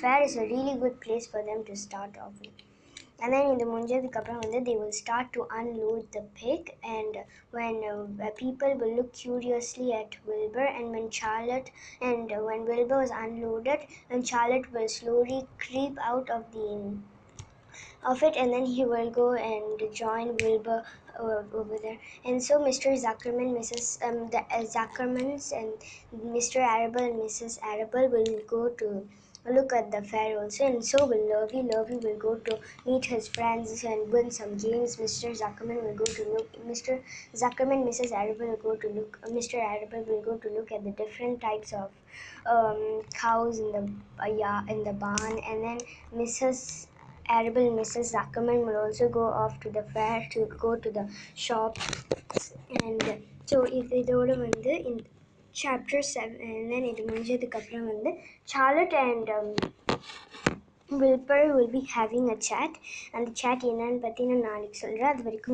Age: 20-39